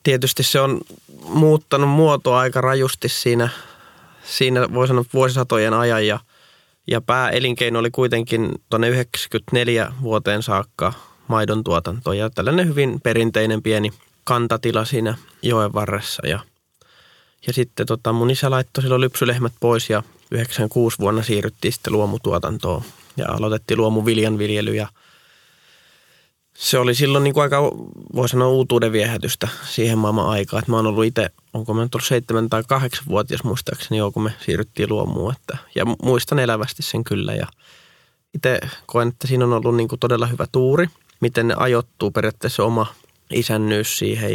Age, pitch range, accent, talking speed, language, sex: 20-39, 110-125 Hz, native, 140 wpm, Finnish, male